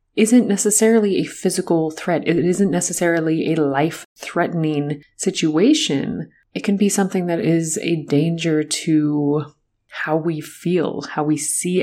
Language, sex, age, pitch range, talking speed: English, female, 30-49, 150-185 Hz, 135 wpm